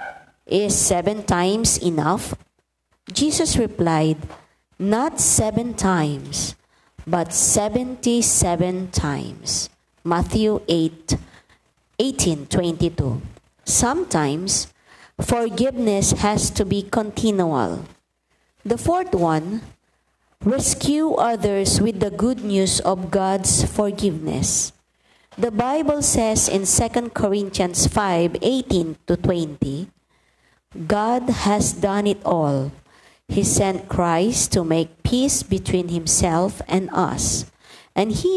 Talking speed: 95 wpm